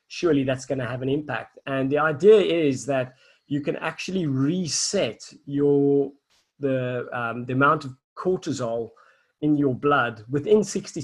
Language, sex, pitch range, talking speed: English, male, 125-145 Hz, 150 wpm